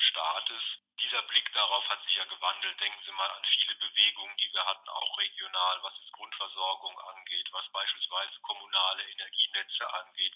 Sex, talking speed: male, 170 wpm